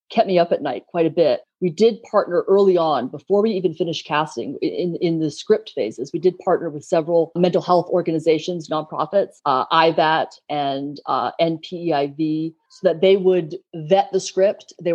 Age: 30-49